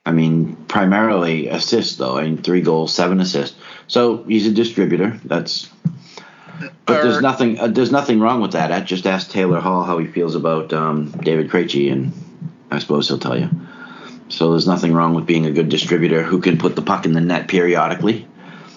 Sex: male